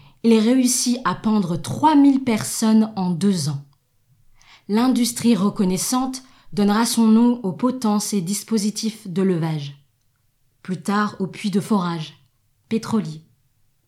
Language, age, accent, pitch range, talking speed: French, 20-39, French, 140-215 Hz, 120 wpm